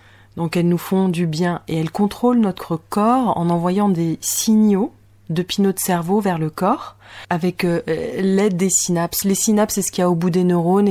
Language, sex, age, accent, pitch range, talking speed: English, female, 30-49, French, 165-190 Hz, 210 wpm